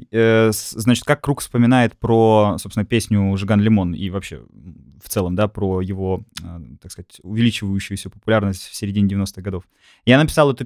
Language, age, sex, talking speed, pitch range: Russian, 20-39, male, 145 wpm, 100-125 Hz